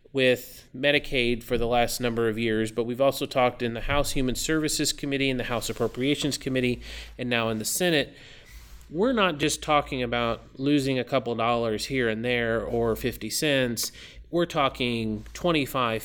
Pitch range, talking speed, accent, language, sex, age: 120-145 Hz, 170 wpm, American, English, male, 30-49